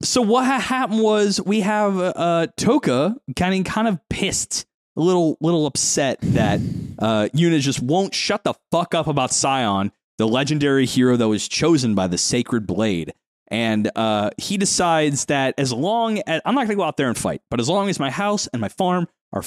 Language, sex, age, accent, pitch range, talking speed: English, male, 20-39, American, 120-185 Hz, 195 wpm